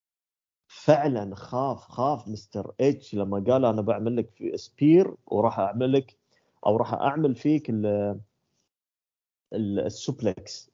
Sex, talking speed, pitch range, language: male, 115 wpm, 110-145 Hz, Arabic